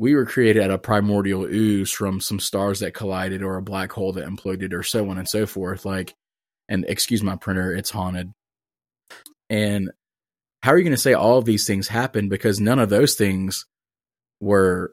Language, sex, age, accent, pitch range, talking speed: English, male, 20-39, American, 95-110 Hz, 195 wpm